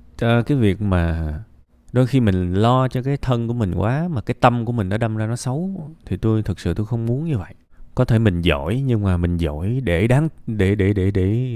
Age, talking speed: 20-39, 240 wpm